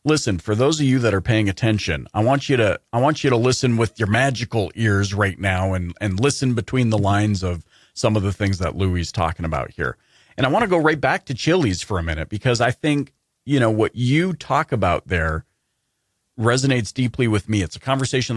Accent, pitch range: American, 95-125 Hz